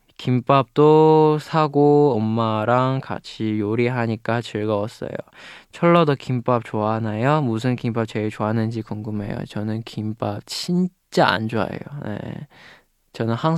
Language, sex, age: Chinese, male, 20-39